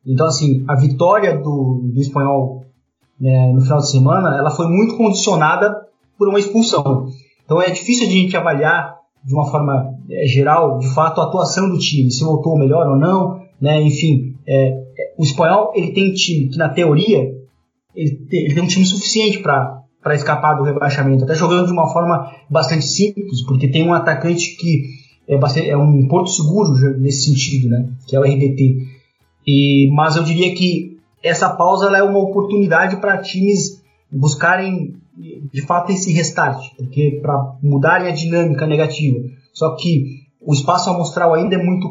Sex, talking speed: male, 175 wpm